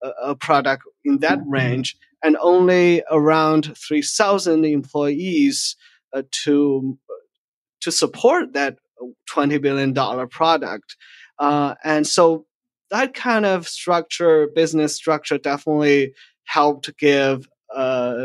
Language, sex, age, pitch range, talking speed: English, male, 30-49, 140-175 Hz, 100 wpm